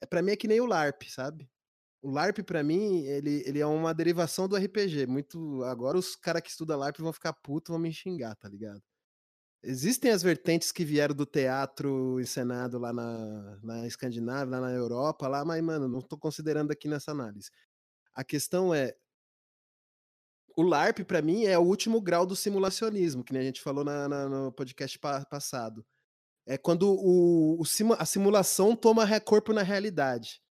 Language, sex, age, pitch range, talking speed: Portuguese, male, 20-39, 130-180 Hz, 170 wpm